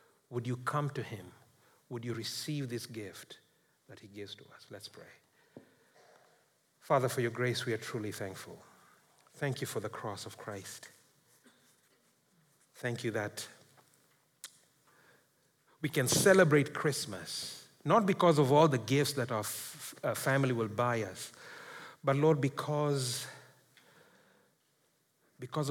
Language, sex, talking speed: English, male, 130 wpm